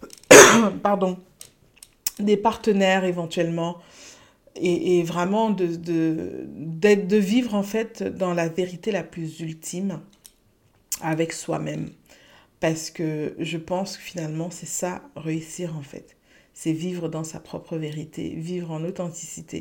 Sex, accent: female, French